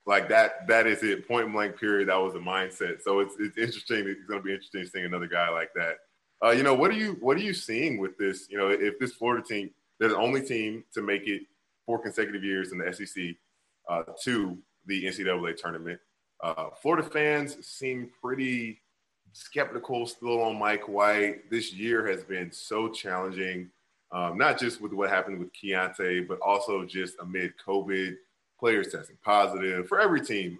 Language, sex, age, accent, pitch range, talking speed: English, male, 20-39, American, 95-120 Hz, 185 wpm